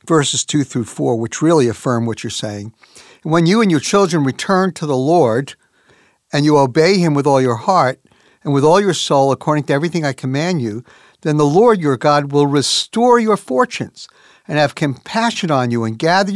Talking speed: 200 wpm